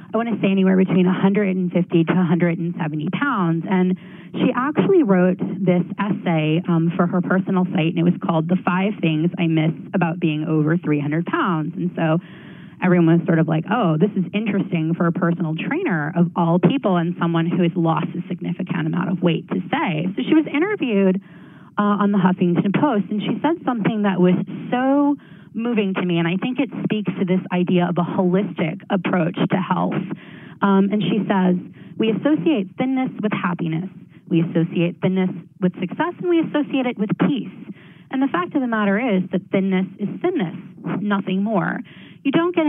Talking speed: 190 wpm